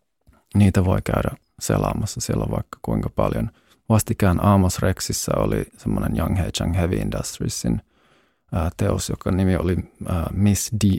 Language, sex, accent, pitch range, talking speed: Finnish, male, native, 90-105 Hz, 130 wpm